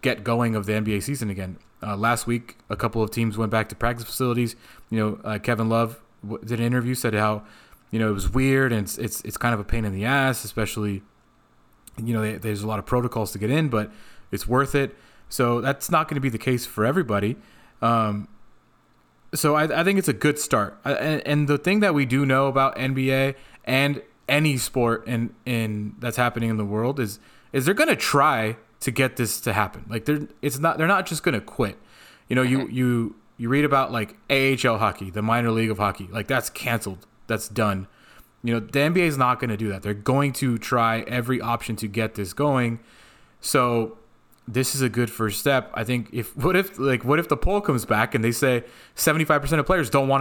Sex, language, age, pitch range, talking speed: male, English, 20-39, 110-135 Hz, 230 wpm